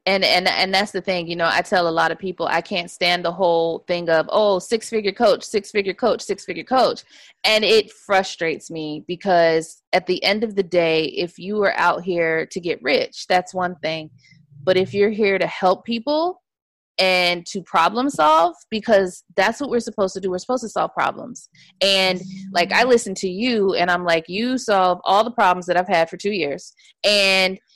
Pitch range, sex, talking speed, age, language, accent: 180-235 Hz, female, 205 wpm, 20-39, English, American